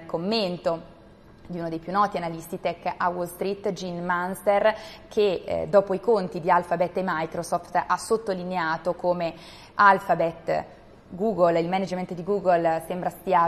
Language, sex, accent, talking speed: Italian, female, native, 145 wpm